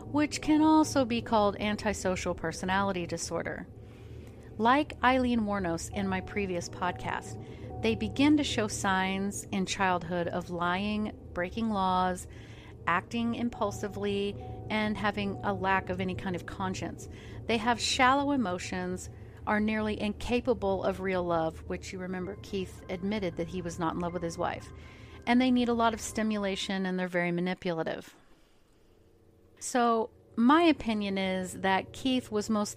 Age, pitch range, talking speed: 40-59, 170-225 Hz, 145 wpm